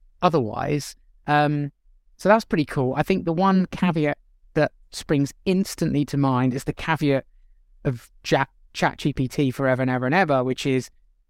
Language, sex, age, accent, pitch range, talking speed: English, male, 20-39, British, 125-150 Hz, 160 wpm